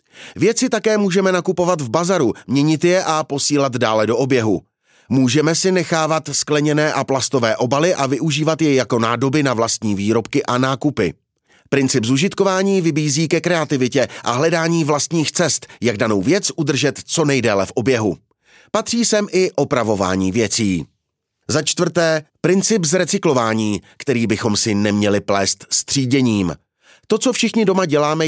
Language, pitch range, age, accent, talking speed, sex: Czech, 125-160 Hz, 30-49, native, 140 wpm, male